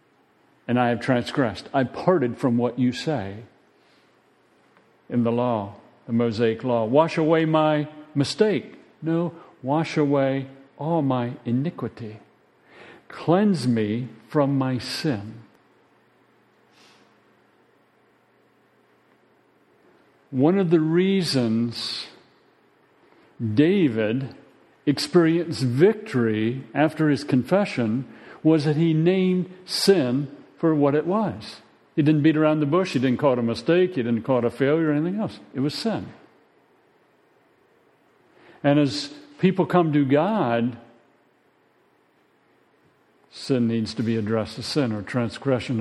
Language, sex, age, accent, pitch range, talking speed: English, male, 50-69, American, 120-155 Hz, 115 wpm